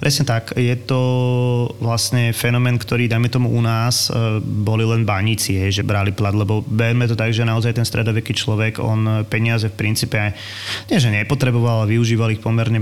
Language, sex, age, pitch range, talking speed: Slovak, male, 20-39, 110-125 Hz, 185 wpm